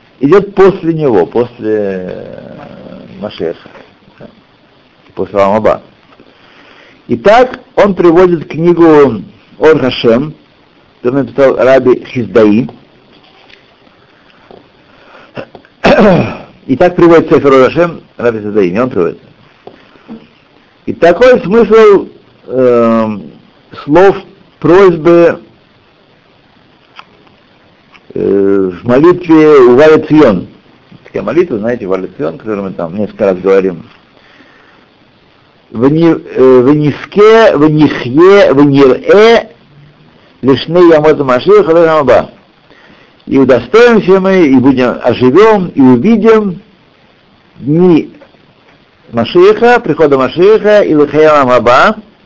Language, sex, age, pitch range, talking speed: Russian, male, 60-79, 130-190 Hz, 80 wpm